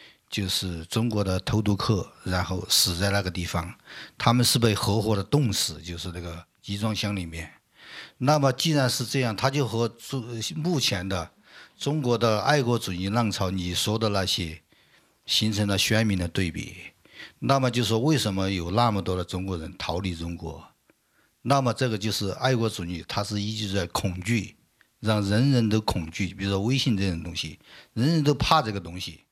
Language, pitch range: French, 95-125 Hz